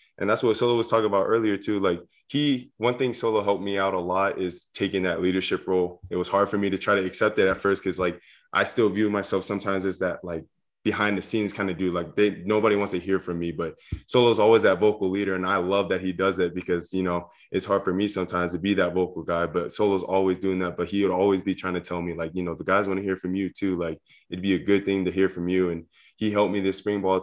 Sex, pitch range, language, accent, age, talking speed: male, 90-100 Hz, English, American, 20-39, 280 wpm